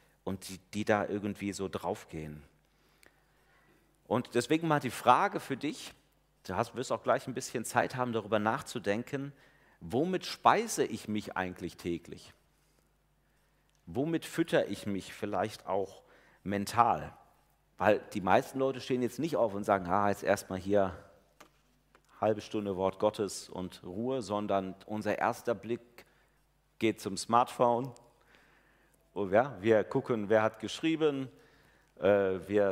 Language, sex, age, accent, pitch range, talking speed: German, male, 40-59, German, 100-130 Hz, 140 wpm